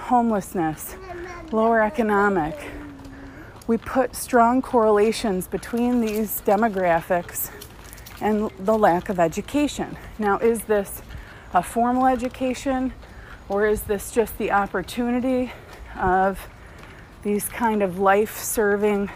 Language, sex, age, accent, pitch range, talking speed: English, female, 30-49, American, 175-225 Hz, 100 wpm